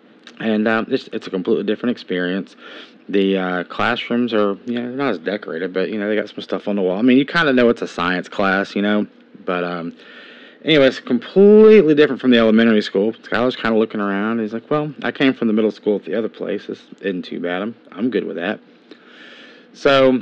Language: English